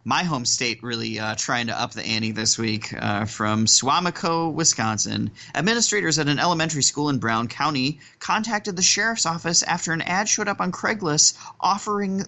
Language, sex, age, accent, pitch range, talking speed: English, male, 30-49, American, 120-195 Hz, 175 wpm